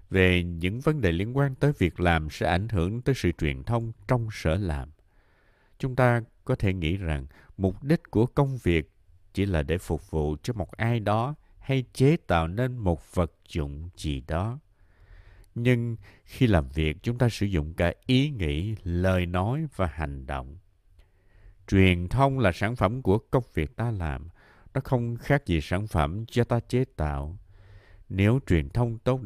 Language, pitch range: Vietnamese, 85-115 Hz